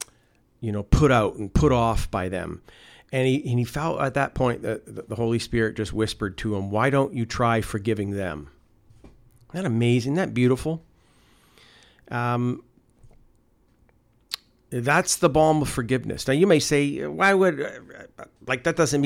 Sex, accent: male, American